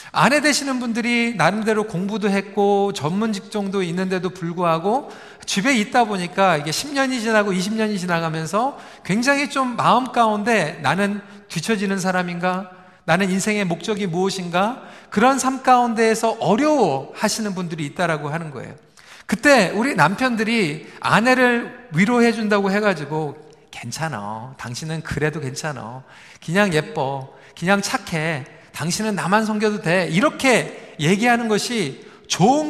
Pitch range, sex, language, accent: 180-240 Hz, male, Korean, native